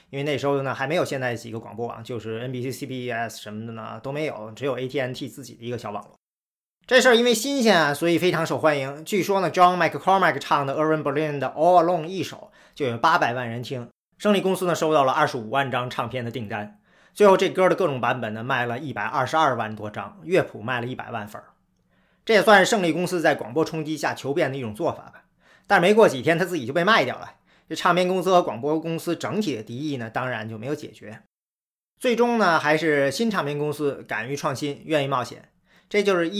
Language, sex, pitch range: Chinese, male, 125-165 Hz